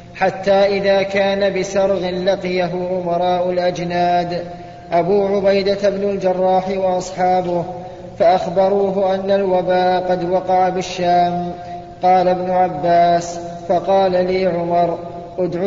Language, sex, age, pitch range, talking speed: Arabic, male, 20-39, 175-190 Hz, 95 wpm